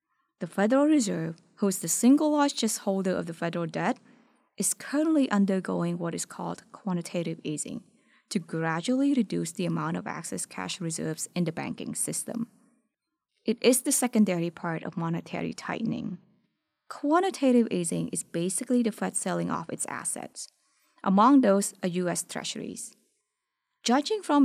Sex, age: female, 20-39